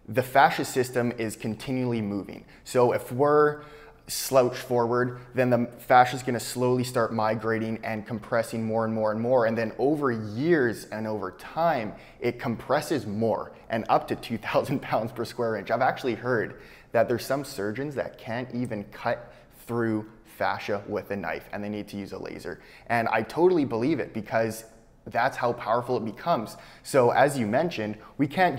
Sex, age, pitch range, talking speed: male, 20-39, 110-130 Hz, 180 wpm